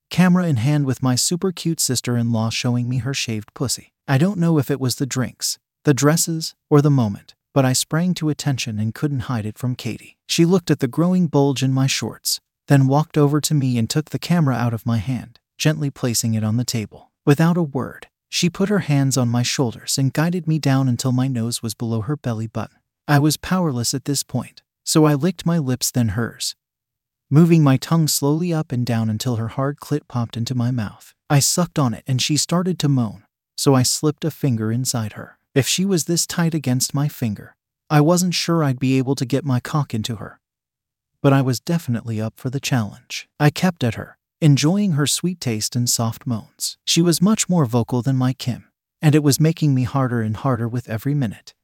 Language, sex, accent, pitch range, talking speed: English, male, American, 120-155 Hz, 220 wpm